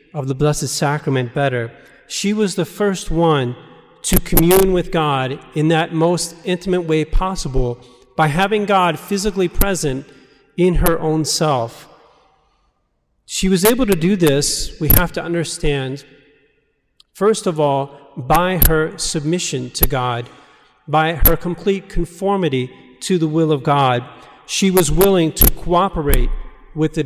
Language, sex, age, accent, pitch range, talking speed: English, male, 40-59, American, 140-175 Hz, 140 wpm